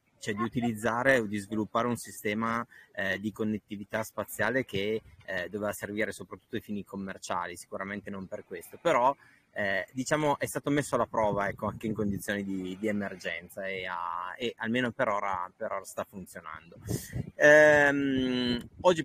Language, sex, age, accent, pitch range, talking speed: Italian, male, 20-39, native, 100-120 Hz, 160 wpm